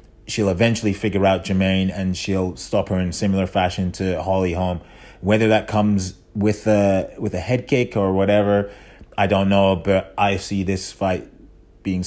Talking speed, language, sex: 175 wpm, English, male